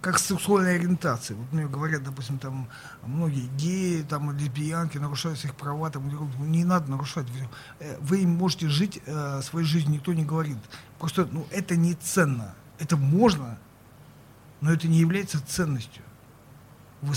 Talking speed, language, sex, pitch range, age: 145 wpm, Russian, male, 135-165 Hz, 50-69